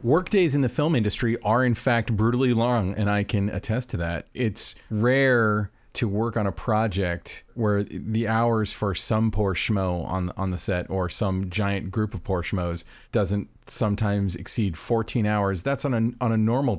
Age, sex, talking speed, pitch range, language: 40-59, male, 185 wpm, 100-120 Hz, English